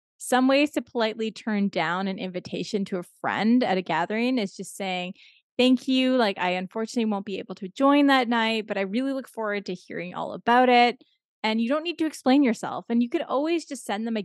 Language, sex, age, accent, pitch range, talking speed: English, female, 20-39, American, 190-250 Hz, 230 wpm